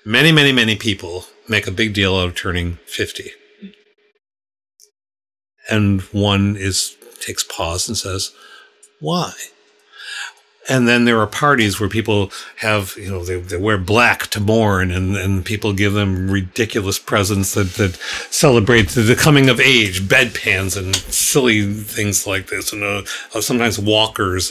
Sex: male